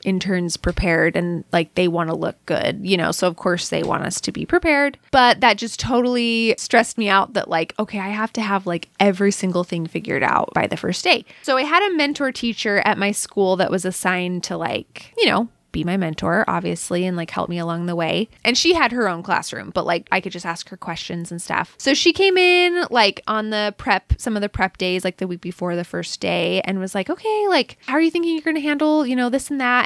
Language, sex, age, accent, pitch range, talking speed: English, female, 20-39, American, 180-235 Hz, 250 wpm